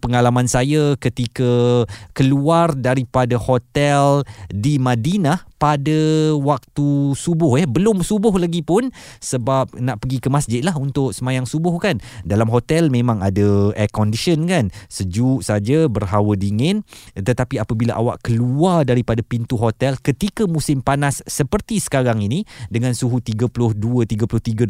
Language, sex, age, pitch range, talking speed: Malay, male, 20-39, 110-145 Hz, 135 wpm